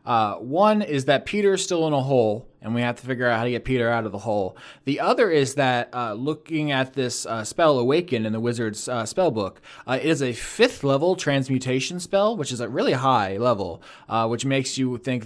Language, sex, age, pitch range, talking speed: English, male, 20-39, 110-135 Hz, 230 wpm